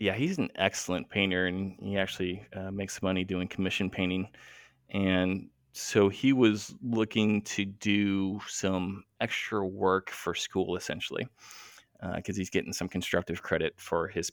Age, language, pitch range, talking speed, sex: 20-39, English, 95-110 Hz, 150 wpm, male